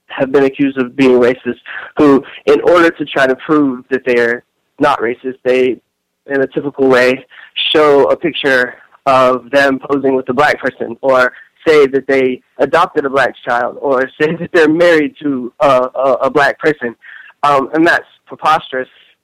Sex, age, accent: male, 20-39, American